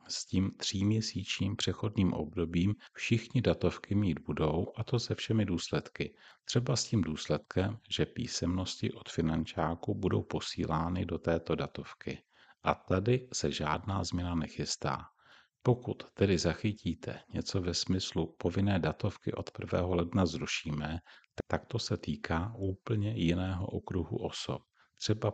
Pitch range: 85-105 Hz